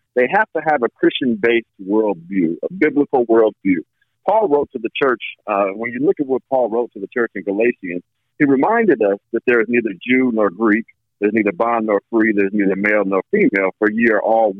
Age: 50-69